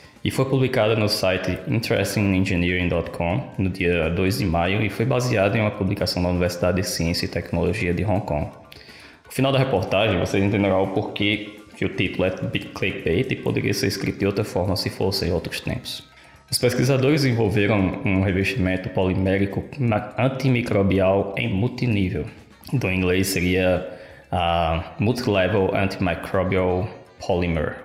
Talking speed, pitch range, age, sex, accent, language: 150 wpm, 90-110 Hz, 20-39, male, Brazilian, Portuguese